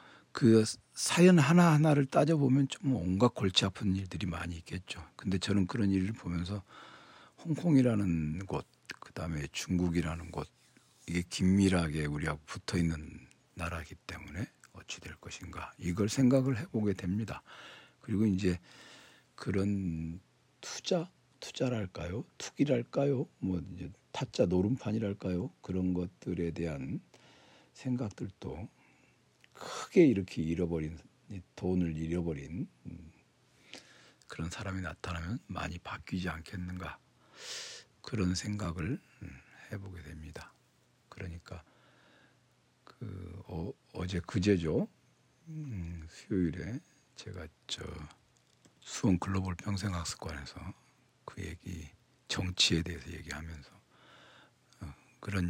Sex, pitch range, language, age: male, 85-110 Hz, Korean, 60-79